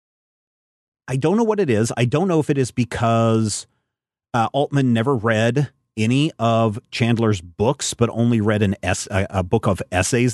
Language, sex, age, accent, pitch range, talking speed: English, male, 30-49, American, 105-125 Hz, 185 wpm